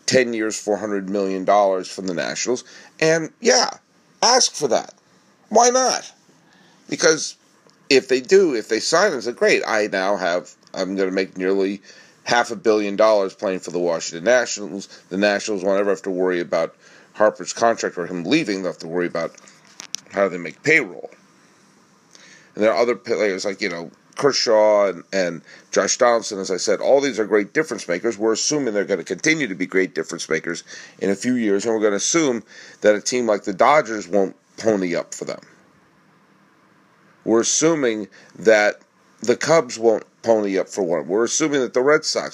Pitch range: 100-140 Hz